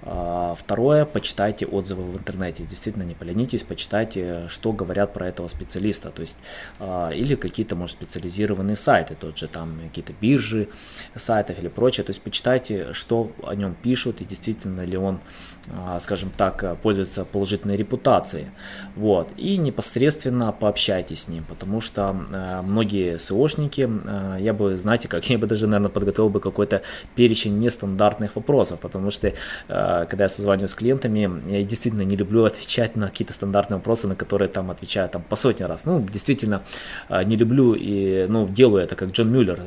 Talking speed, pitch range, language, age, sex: 155 wpm, 95-115 Hz, Russian, 20-39, male